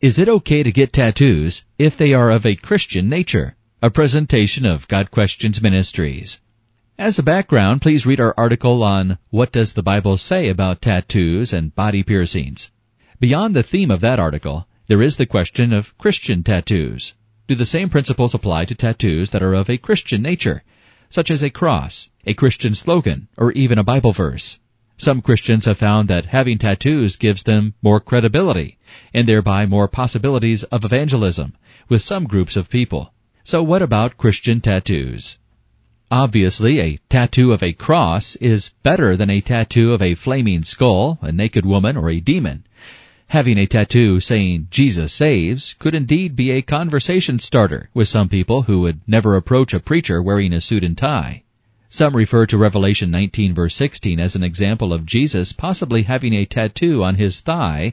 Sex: male